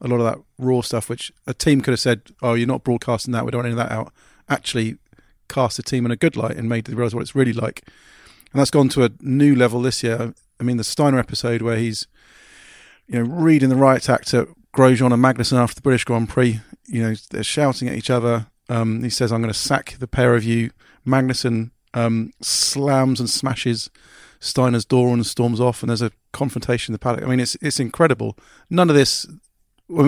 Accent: British